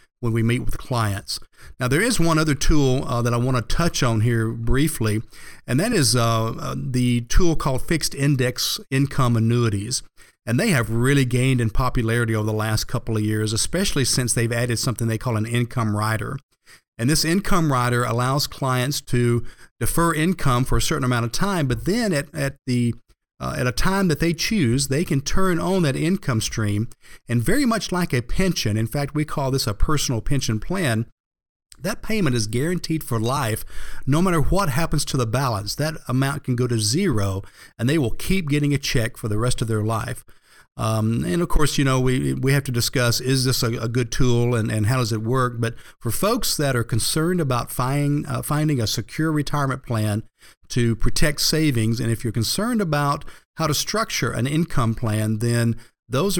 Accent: American